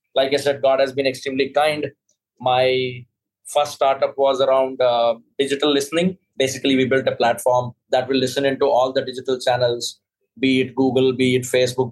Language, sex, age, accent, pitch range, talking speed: English, male, 20-39, Indian, 120-135 Hz, 175 wpm